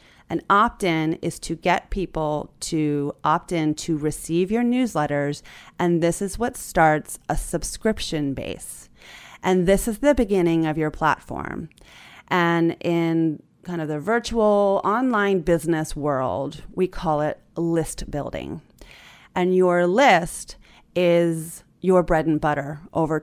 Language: English